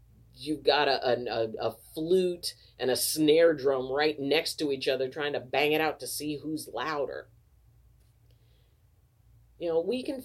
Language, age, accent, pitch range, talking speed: English, 40-59, American, 125-200 Hz, 165 wpm